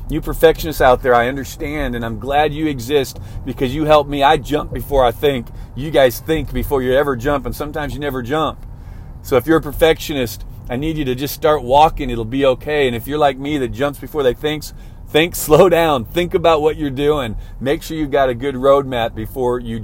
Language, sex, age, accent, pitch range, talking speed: English, male, 40-59, American, 115-150 Hz, 225 wpm